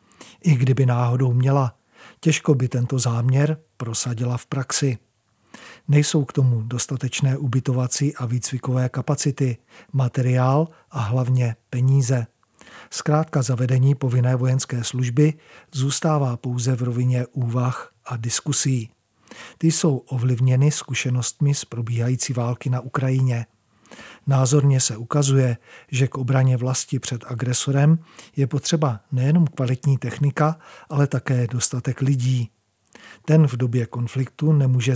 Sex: male